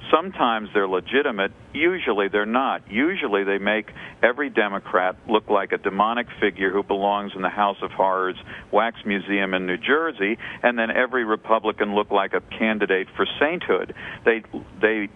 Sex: male